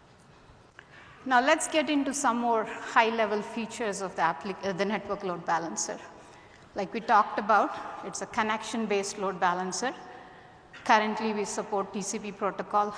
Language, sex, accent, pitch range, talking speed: English, female, Indian, 190-225 Hz, 135 wpm